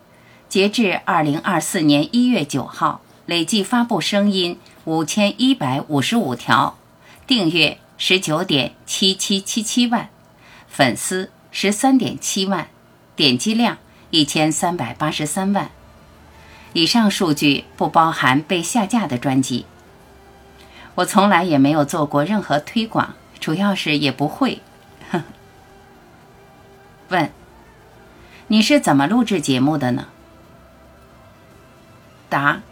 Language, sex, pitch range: Chinese, female, 140-205 Hz